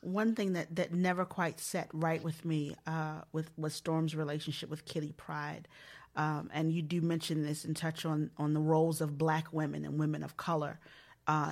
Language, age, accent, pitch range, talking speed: English, 30-49, American, 155-210 Hz, 200 wpm